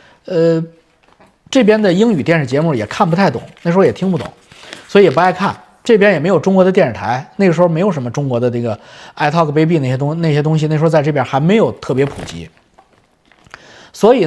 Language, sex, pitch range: Chinese, male, 125-195 Hz